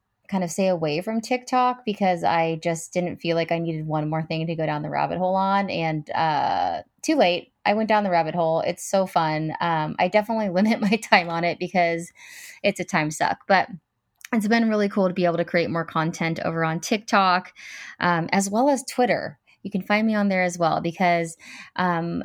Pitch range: 165-200 Hz